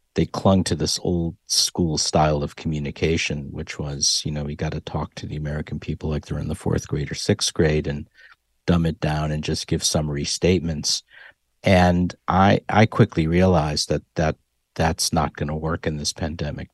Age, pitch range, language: 50-69, 75-90 Hz, English